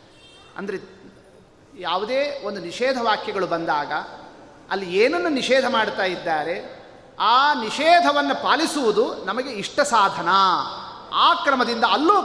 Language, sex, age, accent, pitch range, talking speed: Kannada, male, 30-49, native, 180-255 Hz, 95 wpm